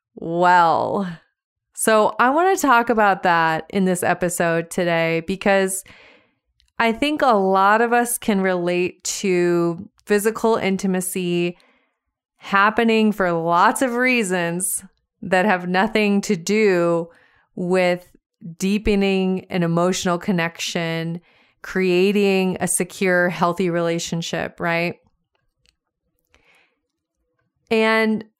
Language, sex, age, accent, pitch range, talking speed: English, female, 30-49, American, 175-215 Hz, 95 wpm